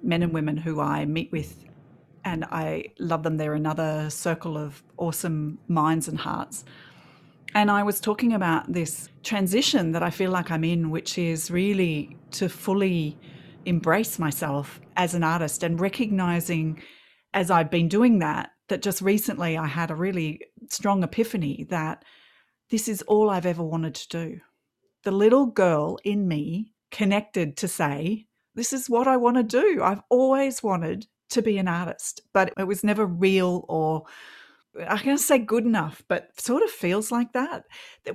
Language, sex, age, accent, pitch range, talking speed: English, female, 40-59, Australian, 160-205 Hz, 170 wpm